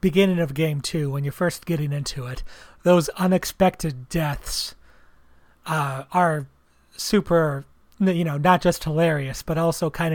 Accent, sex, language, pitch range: American, male, English, 145-175 Hz